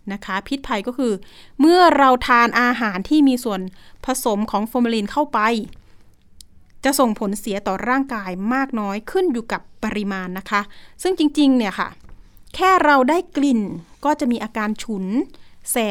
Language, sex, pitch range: Thai, female, 200-260 Hz